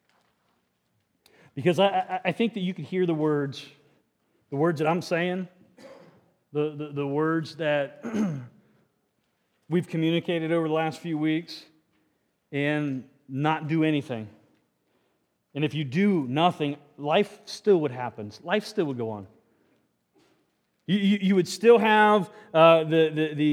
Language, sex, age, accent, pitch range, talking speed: English, male, 30-49, American, 140-195 Hz, 140 wpm